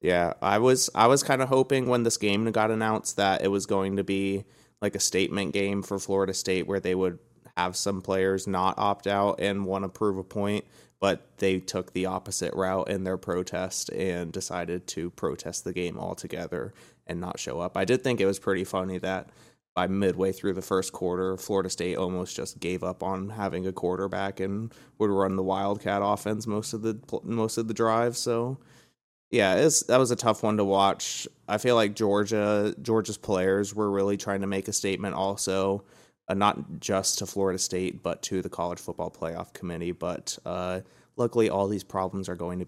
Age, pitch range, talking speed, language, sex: 20-39, 95-105 Hz, 200 wpm, English, male